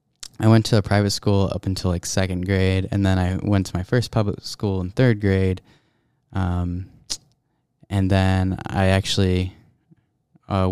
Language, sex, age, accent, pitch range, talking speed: English, male, 10-29, American, 95-115 Hz, 160 wpm